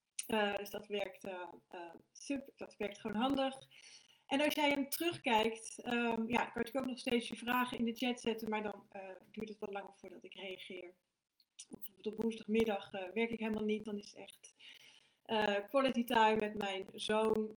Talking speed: 195 wpm